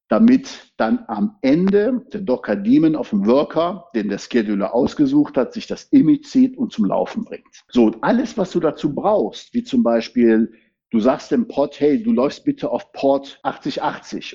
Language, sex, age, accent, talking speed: German, male, 60-79, German, 180 wpm